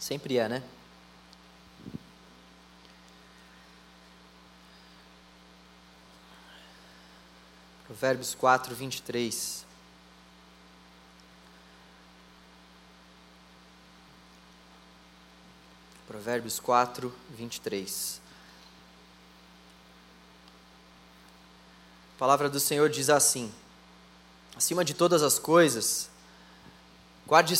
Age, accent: 20-39, Brazilian